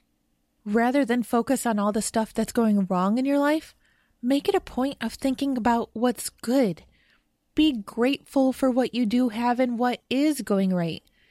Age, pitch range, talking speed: 30-49, 215-270 Hz, 180 wpm